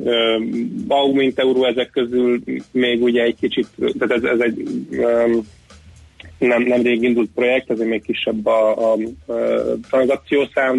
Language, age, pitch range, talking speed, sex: Hungarian, 30-49, 115-130 Hz, 155 wpm, male